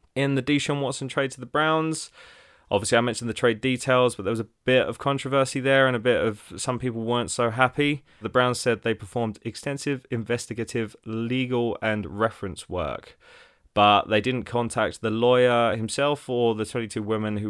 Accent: British